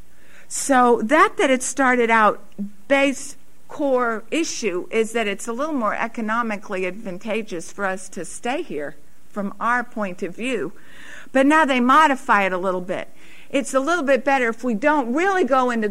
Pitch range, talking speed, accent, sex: 200-260 Hz, 175 wpm, American, female